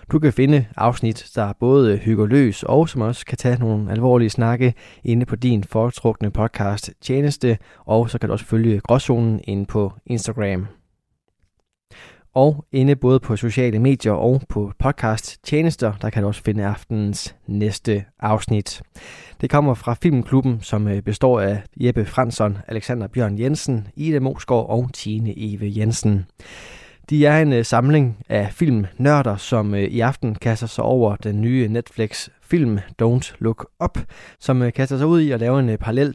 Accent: native